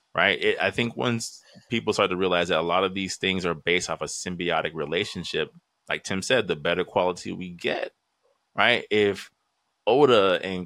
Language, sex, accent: English, male, American